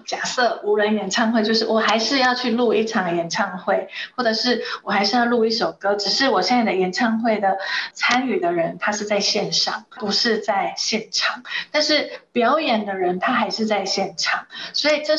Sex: female